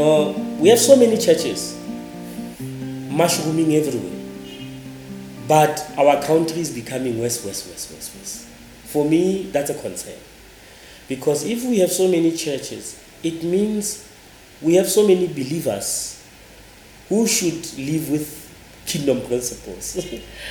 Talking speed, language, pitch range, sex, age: 125 wpm, English, 120-165 Hz, male, 30-49